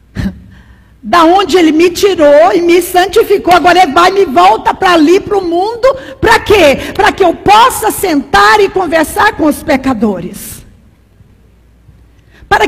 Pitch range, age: 260-380 Hz, 50-69